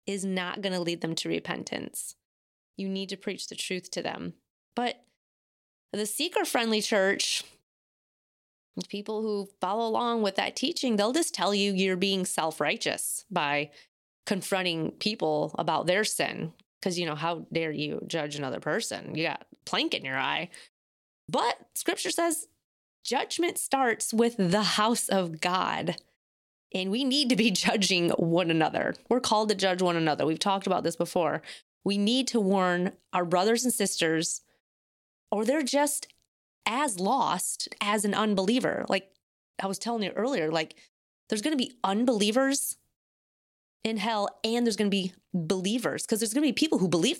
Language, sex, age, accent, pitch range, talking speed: English, female, 20-39, American, 180-230 Hz, 165 wpm